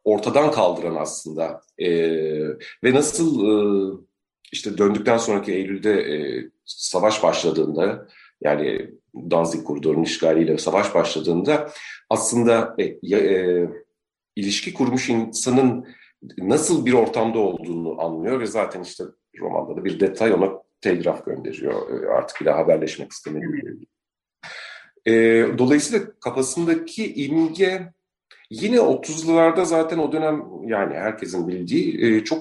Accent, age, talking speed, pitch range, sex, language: native, 40-59, 105 wpm, 100-145 Hz, male, Turkish